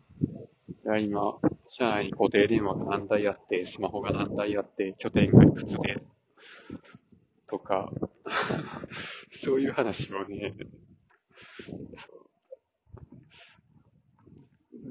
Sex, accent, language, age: male, native, Japanese, 20-39